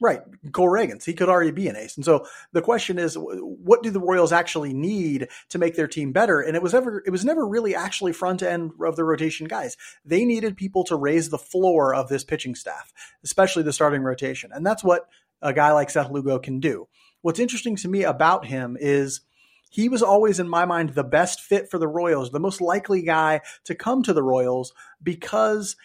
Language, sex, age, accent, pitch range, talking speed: English, male, 30-49, American, 145-185 Hz, 215 wpm